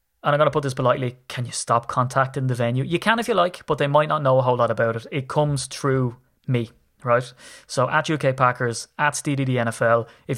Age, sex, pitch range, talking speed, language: 20-39, male, 125-140 Hz, 235 wpm, English